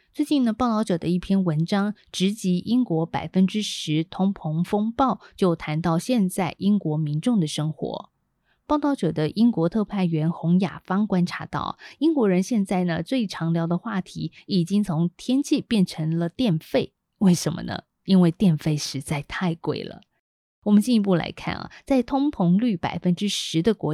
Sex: female